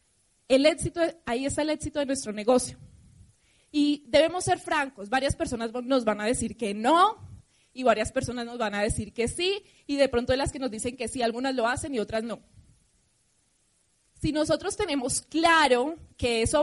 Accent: Colombian